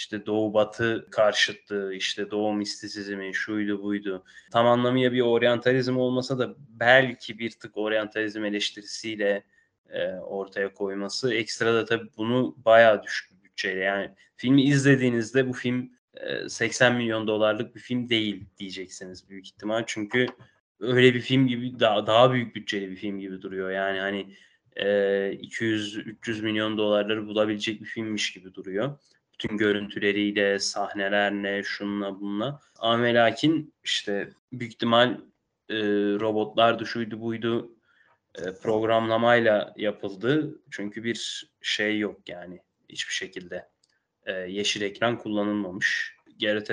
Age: 20-39